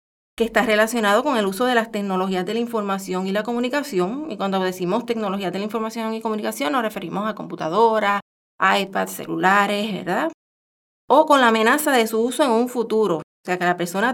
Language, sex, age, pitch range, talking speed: Spanish, female, 30-49, 190-235 Hz, 195 wpm